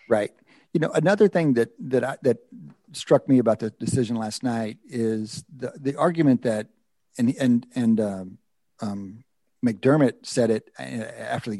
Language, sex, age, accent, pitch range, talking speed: English, male, 50-69, American, 105-135 Hz, 155 wpm